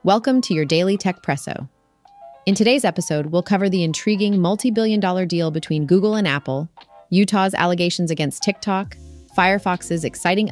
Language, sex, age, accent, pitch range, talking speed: English, female, 30-49, American, 155-190 Hz, 155 wpm